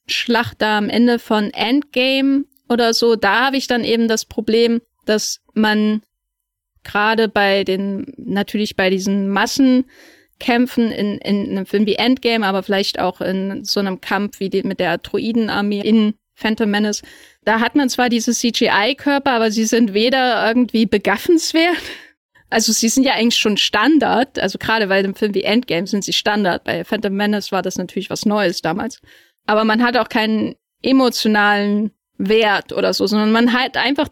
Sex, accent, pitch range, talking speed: female, German, 210-245 Hz, 170 wpm